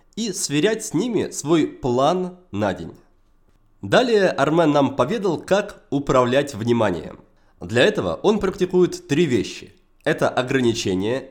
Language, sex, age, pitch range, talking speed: Russian, male, 20-39, 125-190 Hz, 120 wpm